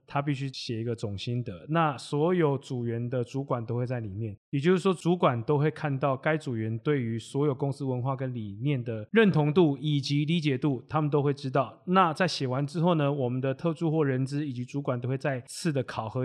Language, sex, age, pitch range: Chinese, male, 20-39, 125-155 Hz